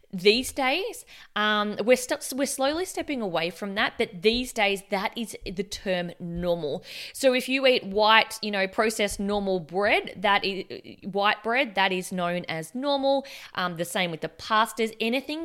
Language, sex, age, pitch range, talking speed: English, female, 20-39, 185-220 Hz, 175 wpm